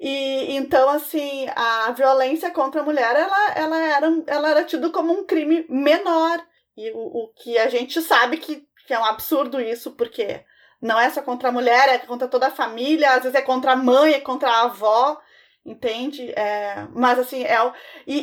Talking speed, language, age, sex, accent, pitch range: 200 wpm, Portuguese, 20-39, female, Brazilian, 230-285 Hz